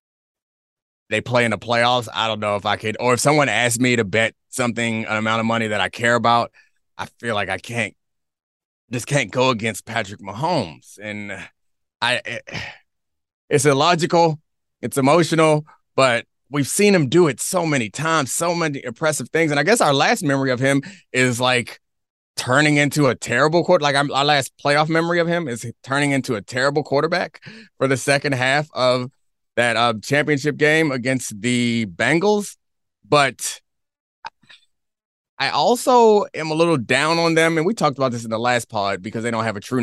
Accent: American